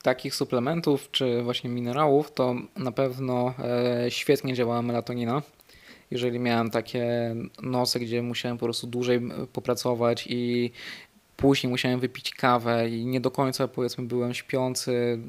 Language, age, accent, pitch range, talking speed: Polish, 20-39, native, 120-135 Hz, 130 wpm